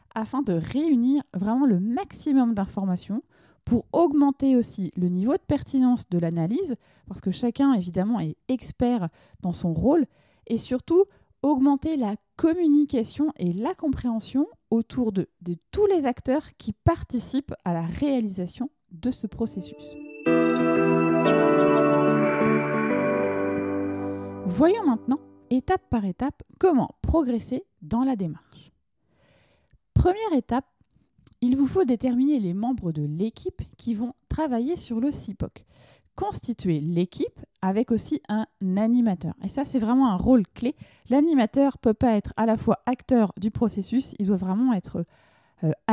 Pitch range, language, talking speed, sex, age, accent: 180-260 Hz, French, 135 wpm, female, 20-39, French